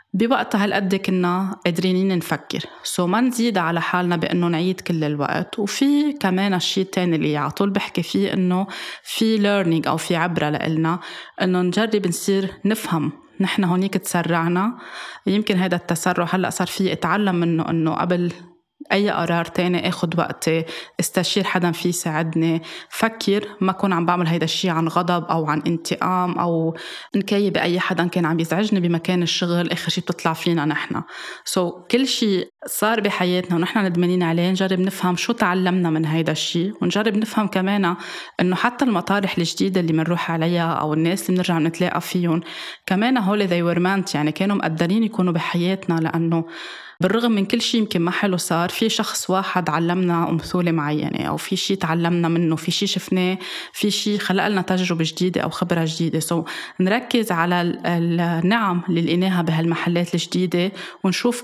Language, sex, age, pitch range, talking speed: Arabic, female, 20-39, 170-195 Hz, 160 wpm